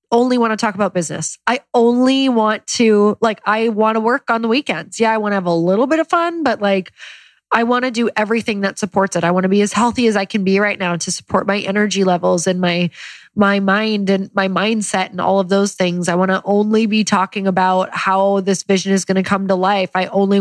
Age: 20-39